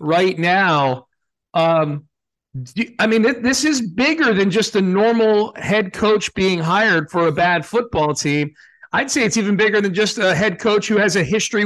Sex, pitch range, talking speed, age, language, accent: male, 165-215 Hz, 190 wpm, 40-59, English, American